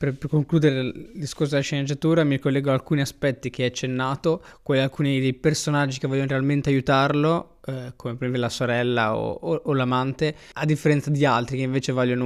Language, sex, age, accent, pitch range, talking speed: Italian, male, 20-39, native, 130-155 Hz, 185 wpm